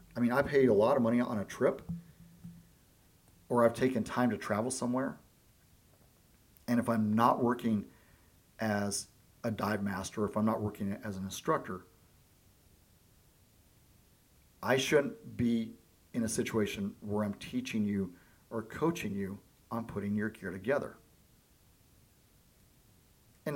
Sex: male